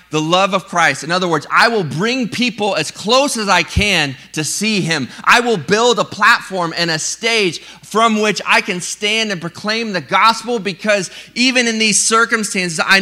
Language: English